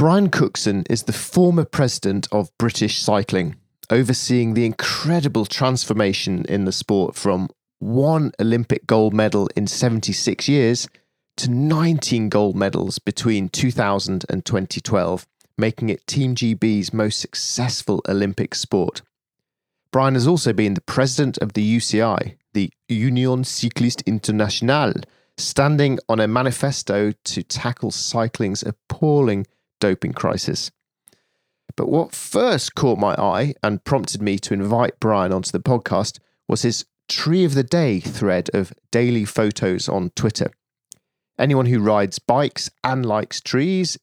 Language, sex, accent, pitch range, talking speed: English, male, British, 100-130 Hz, 130 wpm